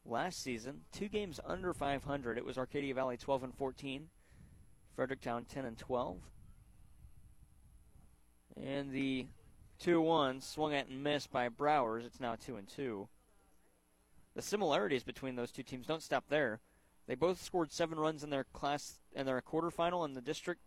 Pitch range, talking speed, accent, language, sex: 115-155 Hz, 155 wpm, American, English, male